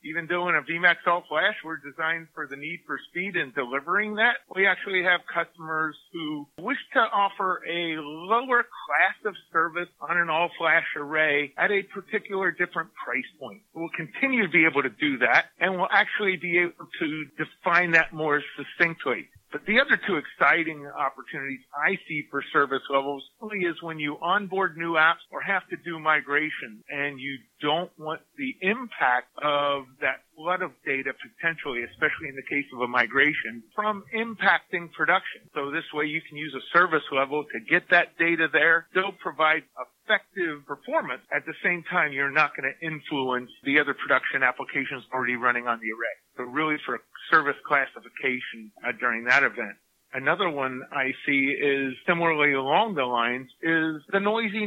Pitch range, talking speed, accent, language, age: 140-180 Hz, 175 wpm, American, English, 50-69